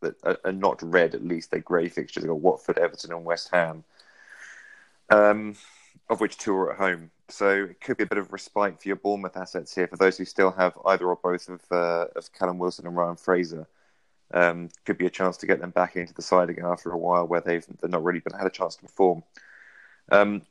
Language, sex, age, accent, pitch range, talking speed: English, male, 30-49, British, 90-95 Hz, 235 wpm